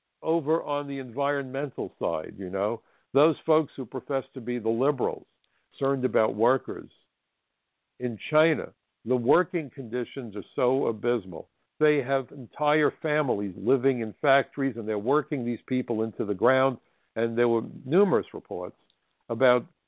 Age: 60-79